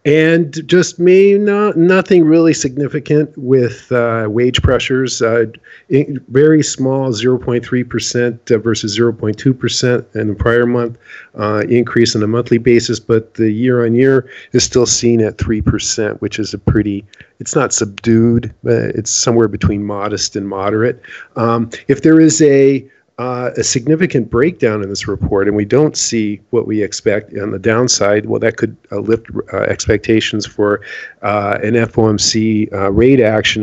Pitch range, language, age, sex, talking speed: 110-135 Hz, English, 50-69, male, 155 wpm